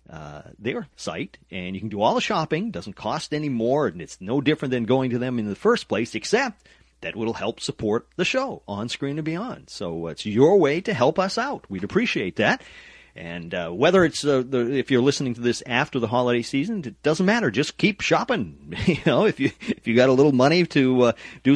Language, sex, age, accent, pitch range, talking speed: English, male, 40-59, American, 95-140 Hz, 230 wpm